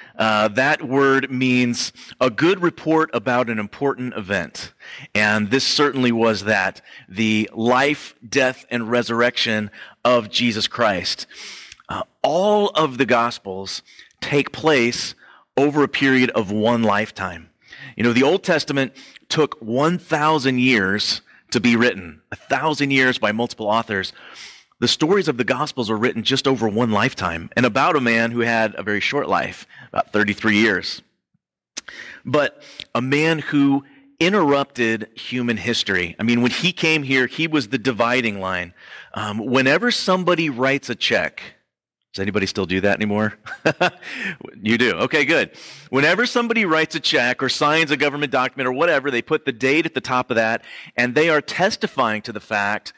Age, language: 30-49, English